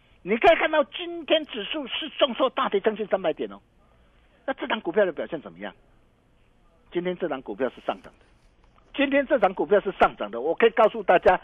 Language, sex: Chinese, male